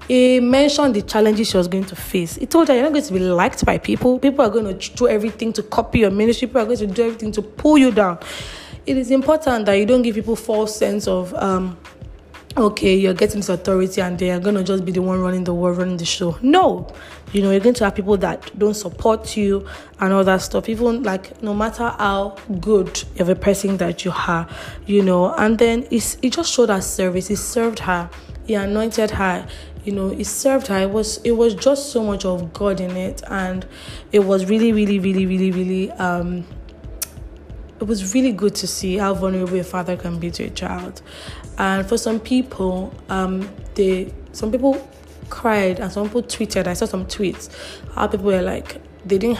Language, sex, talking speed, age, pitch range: English, female, 215 wpm, 20-39, 185-225 Hz